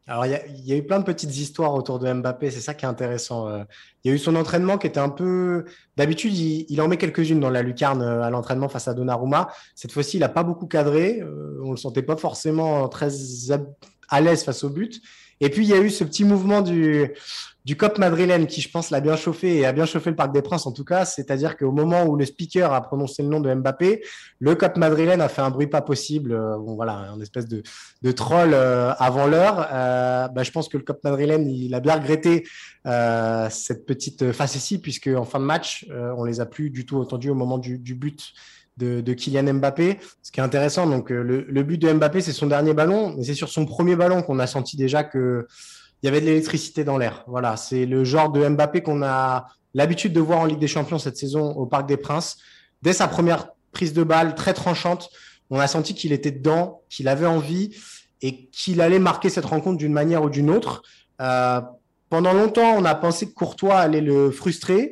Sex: male